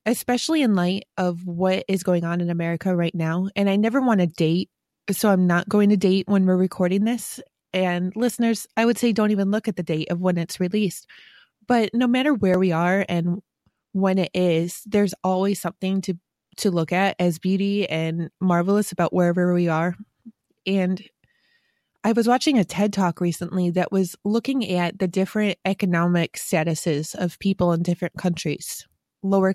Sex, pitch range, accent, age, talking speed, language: female, 175-215 Hz, American, 20-39, 185 wpm, English